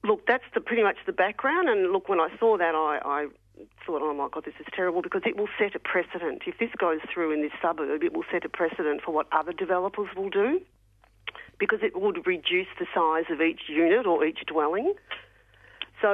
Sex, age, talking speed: female, 40-59, 215 wpm